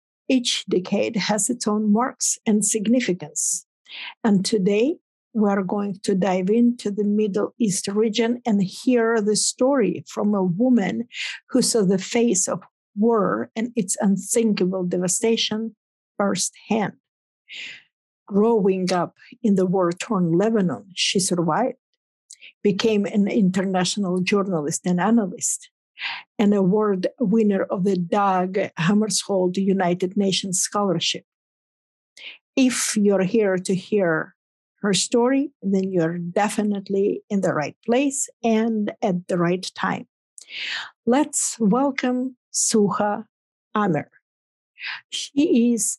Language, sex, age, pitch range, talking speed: English, female, 50-69, 190-230 Hz, 115 wpm